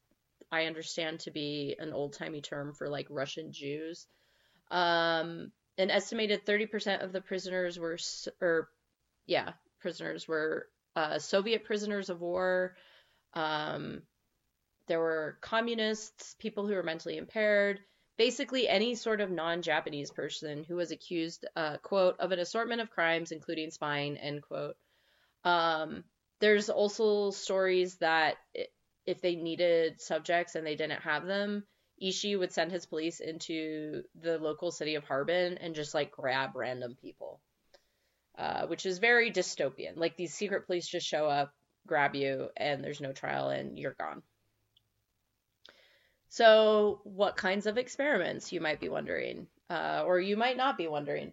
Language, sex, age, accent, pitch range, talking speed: English, female, 30-49, American, 155-205 Hz, 145 wpm